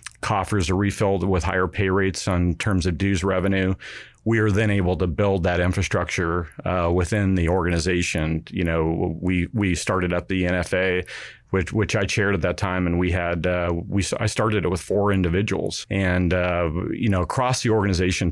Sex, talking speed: male, 185 wpm